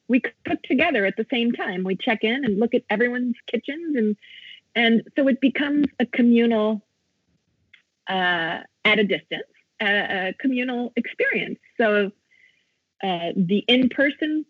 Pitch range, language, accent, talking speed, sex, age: 190-250 Hz, English, American, 140 wpm, female, 40-59